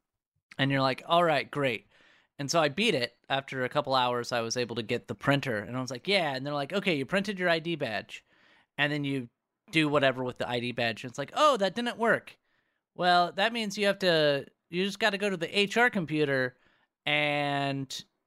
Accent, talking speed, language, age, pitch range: American, 225 wpm, English, 30-49, 135-190 Hz